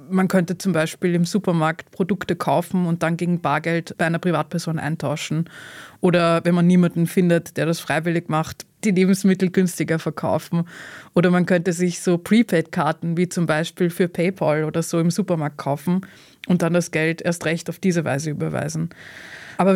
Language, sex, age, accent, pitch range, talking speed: German, female, 20-39, German, 165-190 Hz, 170 wpm